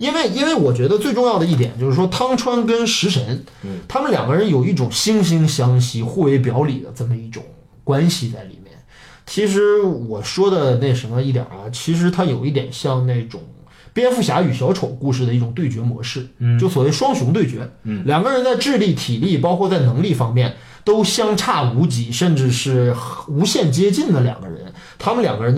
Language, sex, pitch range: Chinese, male, 120-170 Hz